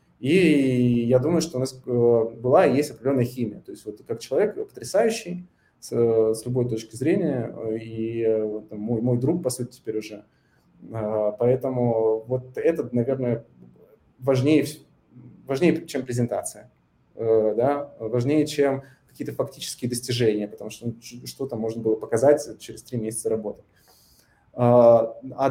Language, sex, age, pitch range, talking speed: Russian, male, 20-39, 120-150 Hz, 125 wpm